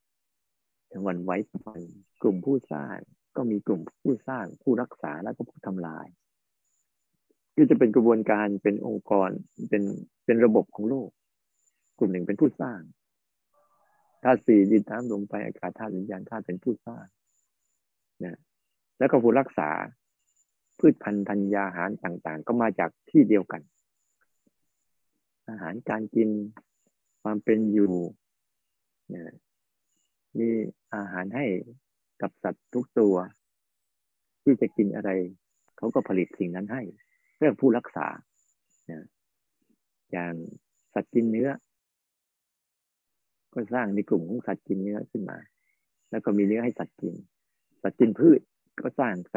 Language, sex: Thai, male